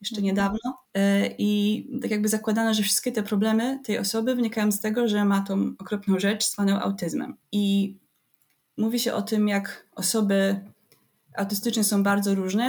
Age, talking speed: 20-39, 155 wpm